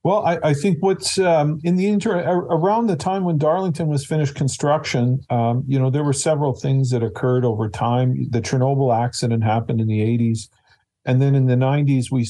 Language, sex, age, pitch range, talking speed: English, male, 50-69, 110-135 Hz, 200 wpm